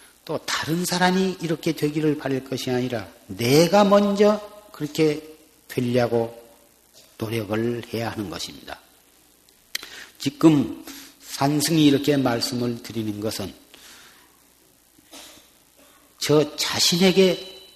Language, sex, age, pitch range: Korean, male, 40-59, 115-170 Hz